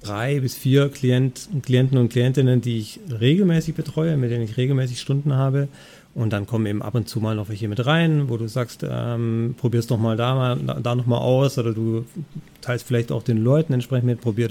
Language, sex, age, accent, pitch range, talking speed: German, male, 40-59, German, 115-135 Hz, 215 wpm